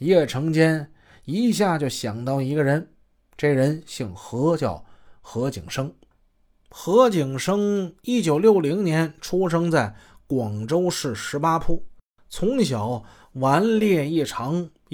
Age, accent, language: 20-39, native, Chinese